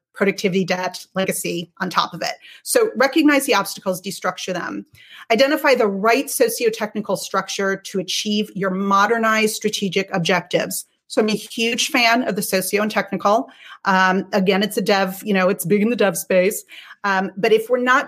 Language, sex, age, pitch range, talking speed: English, female, 30-49, 195-275 Hz, 175 wpm